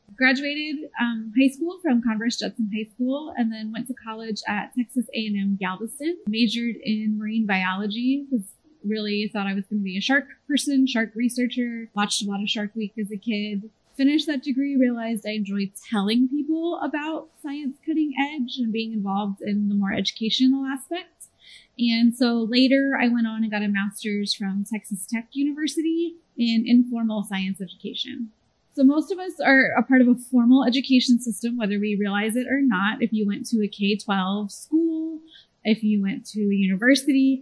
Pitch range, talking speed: 210-270 Hz, 180 wpm